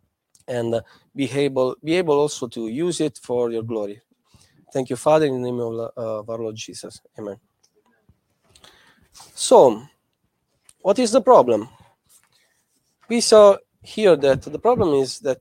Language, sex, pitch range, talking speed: English, male, 125-175 Hz, 150 wpm